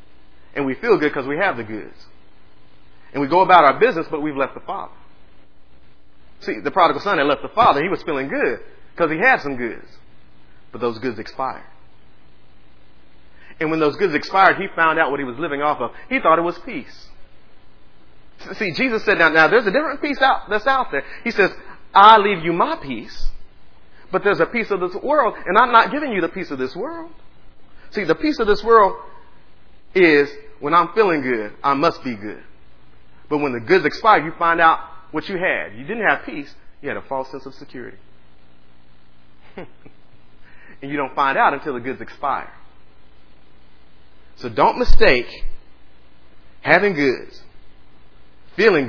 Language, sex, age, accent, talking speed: English, male, 30-49, American, 185 wpm